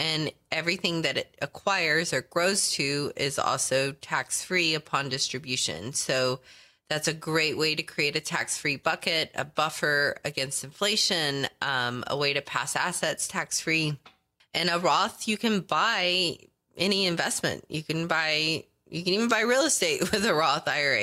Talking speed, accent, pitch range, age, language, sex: 155 wpm, American, 140-175 Hz, 20-39, English, female